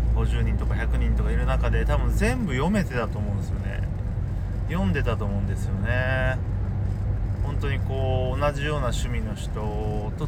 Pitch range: 95-115 Hz